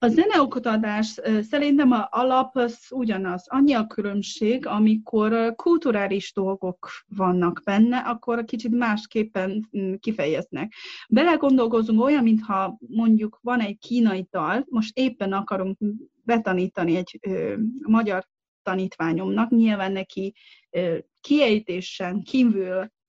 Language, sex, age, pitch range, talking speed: Hungarian, female, 30-49, 195-235 Hz, 100 wpm